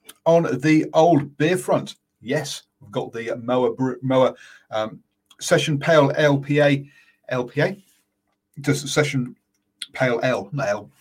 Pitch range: 120-145 Hz